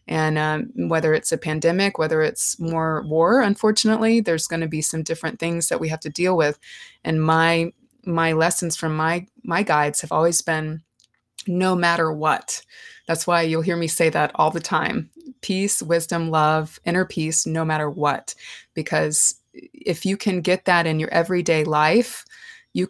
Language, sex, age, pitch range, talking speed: English, female, 20-39, 155-180 Hz, 175 wpm